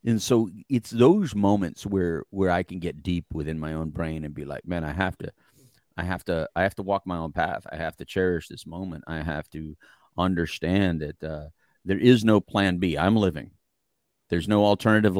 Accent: American